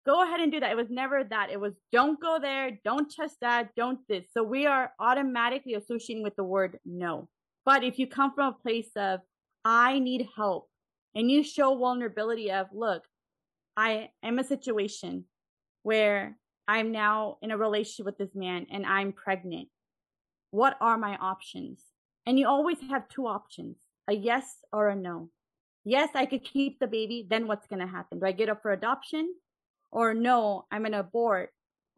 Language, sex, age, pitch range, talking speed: English, female, 30-49, 200-265 Hz, 185 wpm